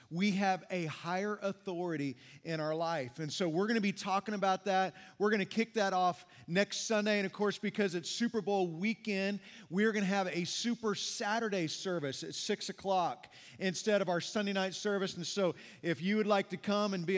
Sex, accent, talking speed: male, American, 210 wpm